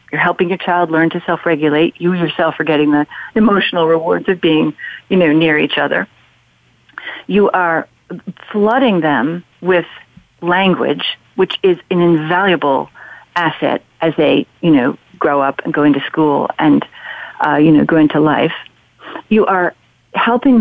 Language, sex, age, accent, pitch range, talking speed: English, female, 50-69, American, 165-210 Hz, 150 wpm